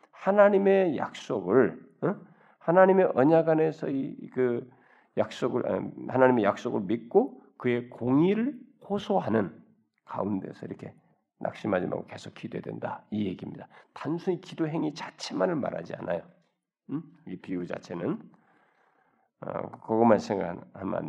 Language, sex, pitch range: Korean, male, 90-125 Hz